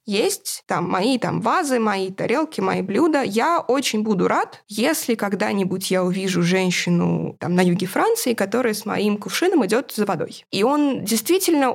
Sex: female